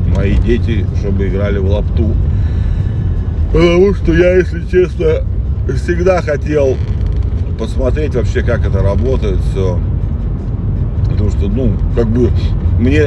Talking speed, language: 115 wpm, Russian